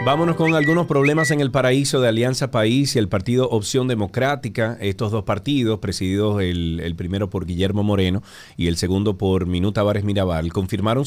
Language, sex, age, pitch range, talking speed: Spanish, male, 30-49, 95-120 Hz, 180 wpm